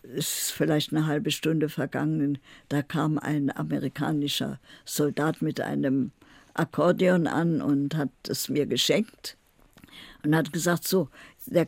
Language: German